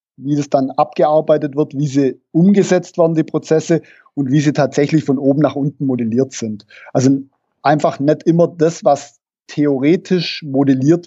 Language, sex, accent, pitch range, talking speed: German, male, German, 135-160 Hz, 155 wpm